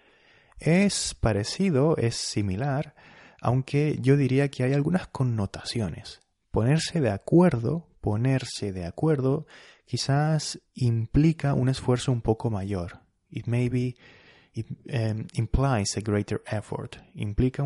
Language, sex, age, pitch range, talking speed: Spanish, male, 30-49, 105-140 Hz, 110 wpm